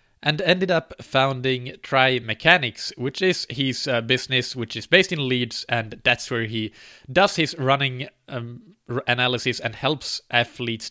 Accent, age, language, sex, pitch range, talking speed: Norwegian, 20-39, English, male, 120-150 Hz, 155 wpm